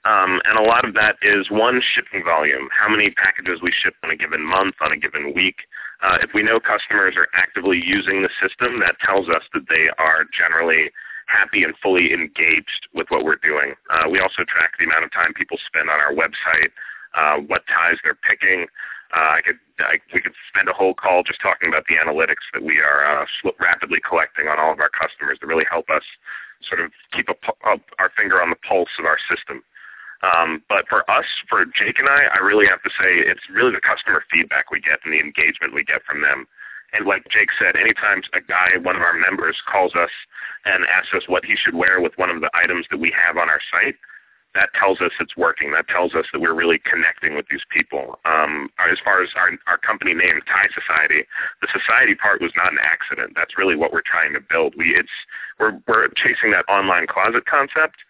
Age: 30-49